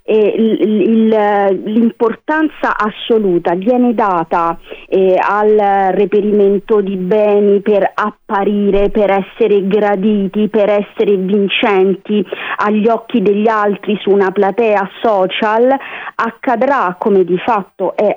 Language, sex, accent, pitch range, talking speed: Italian, female, native, 190-230 Hz, 95 wpm